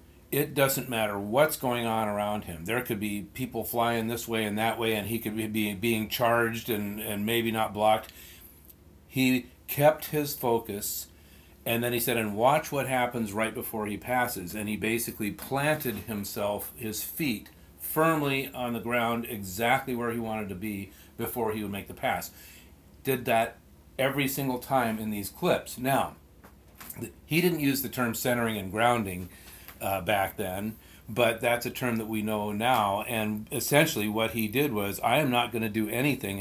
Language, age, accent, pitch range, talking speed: English, 40-59, American, 100-120 Hz, 180 wpm